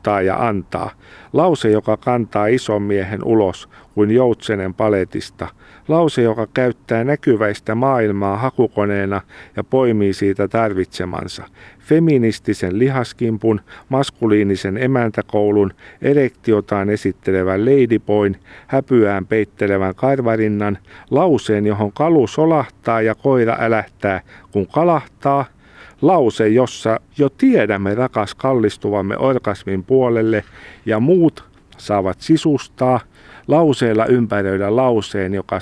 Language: Finnish